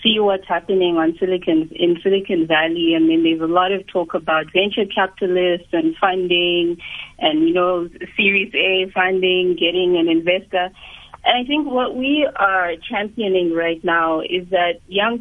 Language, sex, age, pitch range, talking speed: English, female, 30-49, 165-200 Hz, 160 wpm